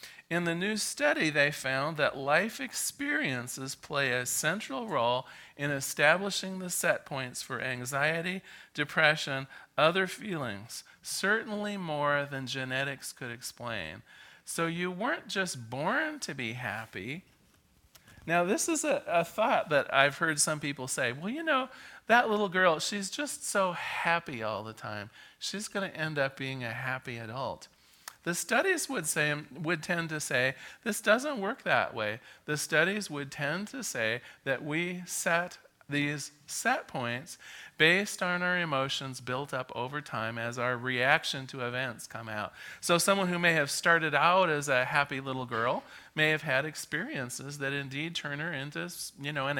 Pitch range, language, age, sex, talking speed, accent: 130-175 Hz, English, 40-59, male, 165 wpm, American